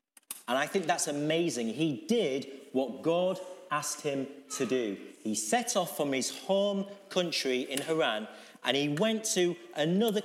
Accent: British